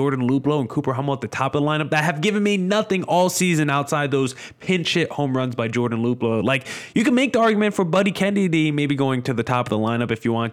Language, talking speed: English, 270 wpm